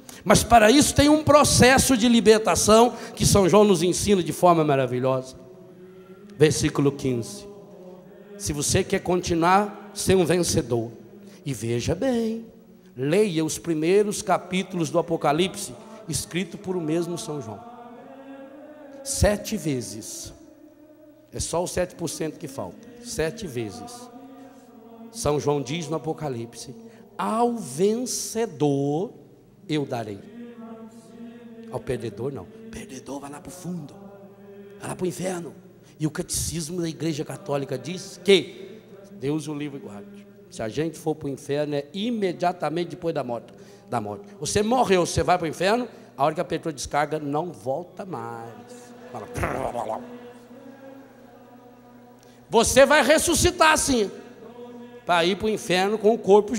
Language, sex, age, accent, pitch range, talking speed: Portuguese, male, 60-79, Brazilian, 155-225 Hz, 135 wpm